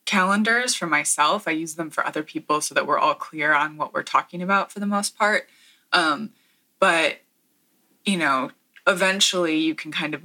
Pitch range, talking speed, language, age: 150-180 Hz, 185 wpm, English, 20-39